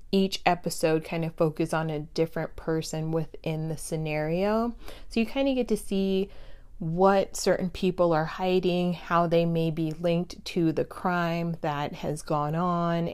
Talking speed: 165 wpm